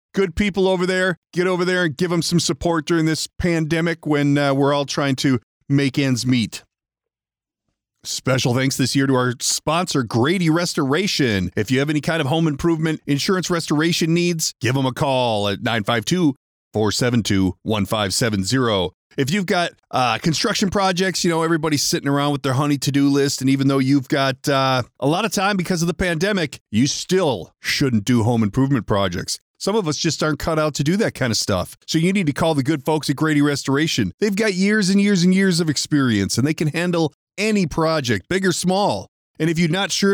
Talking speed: 200 wpm